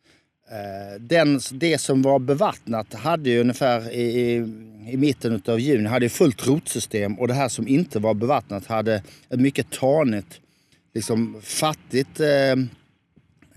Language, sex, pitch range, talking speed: Swedish, male, 115-145 Hz, 140 wpm